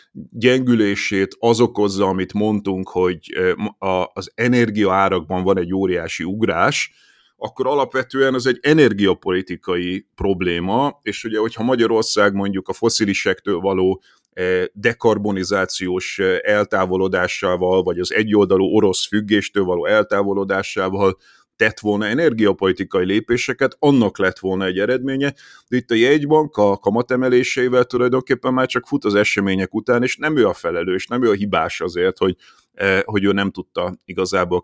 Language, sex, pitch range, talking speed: Hungarian, male, 95-125 Hz, 130 wpm